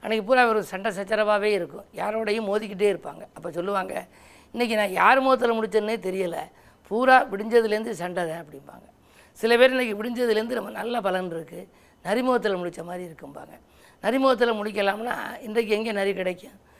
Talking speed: 140 wpm